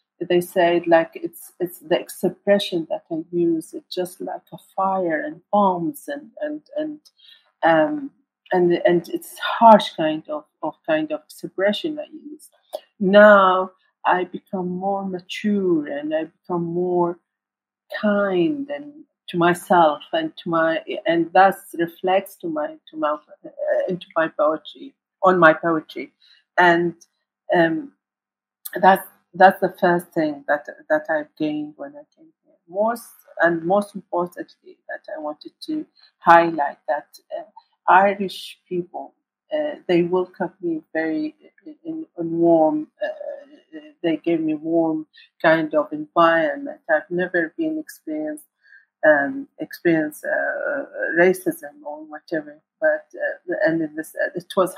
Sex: female